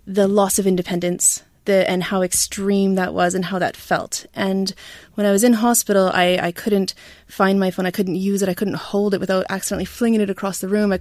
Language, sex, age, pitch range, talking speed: English, female, 20-39, 190-215 Hz, 225 wpm